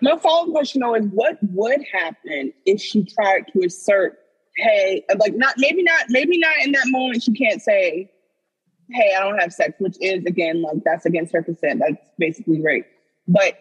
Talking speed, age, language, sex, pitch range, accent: 190 wpm, 20-39, English, female, 200-270 Hz, American